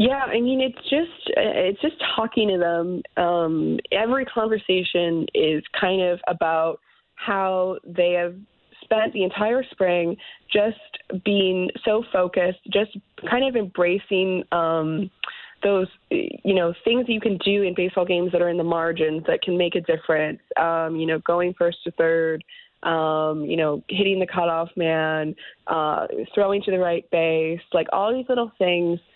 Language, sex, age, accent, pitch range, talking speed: English, female, 20-39, American, 165-200 Hz, 165 wpm